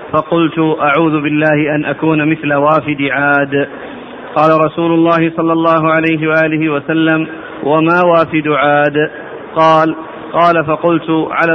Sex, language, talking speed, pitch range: male, Arabic, 120 wpm, 155-165 Hz